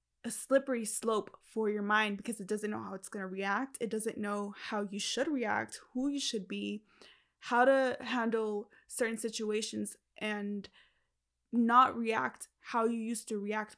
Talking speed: 170 wpm